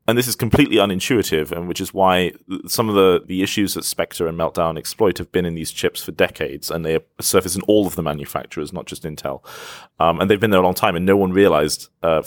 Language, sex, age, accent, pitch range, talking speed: English, male, 30-49, British, 85-95 Hz, 245 wpm